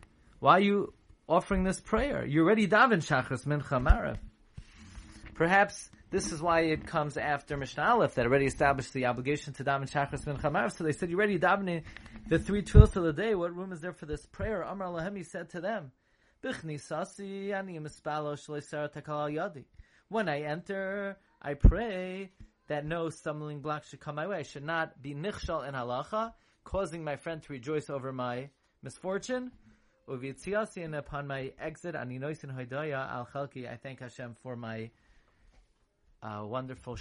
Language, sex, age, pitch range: English, male, 30-49, 125-175 Hz